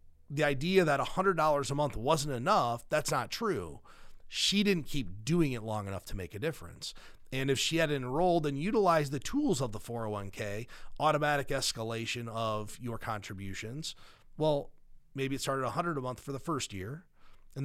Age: 30-49